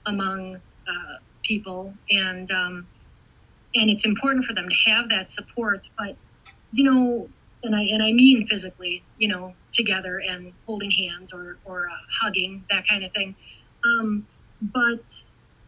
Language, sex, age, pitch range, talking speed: English, female, 30-49, 190-235 Hz, 150 wpm